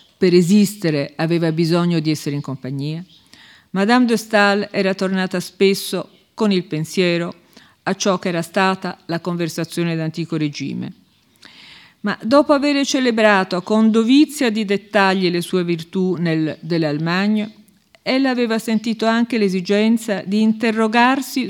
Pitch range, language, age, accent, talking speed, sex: 165-210 Hz, Spanish, 50-69, Italian, 125 wpm, female